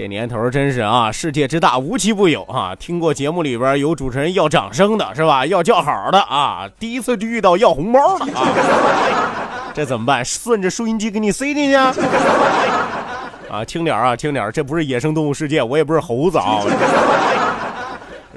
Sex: male